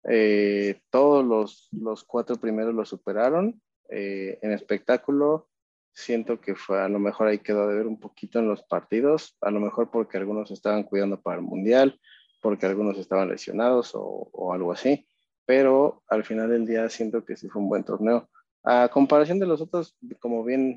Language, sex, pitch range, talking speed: Spanish, male, 105-130 Hz, 180 wpm